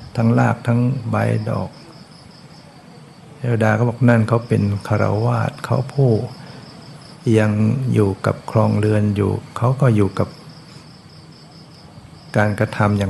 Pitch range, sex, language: 110-140 Hz, male, Thai